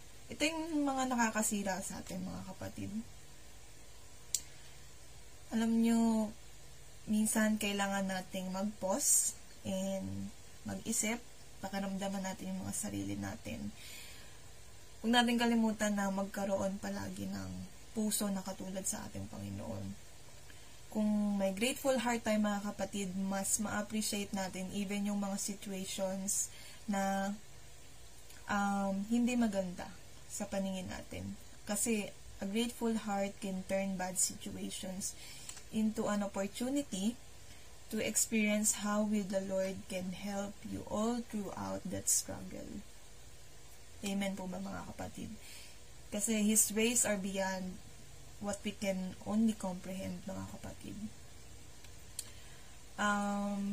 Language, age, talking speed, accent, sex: Filipino, 20-39, 105 wpm, native, female